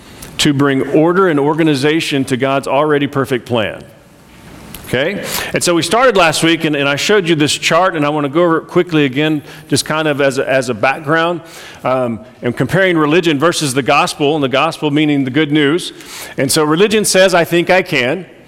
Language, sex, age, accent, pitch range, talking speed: English, male, 40-59, American, 140-175 Hz, 205 wpm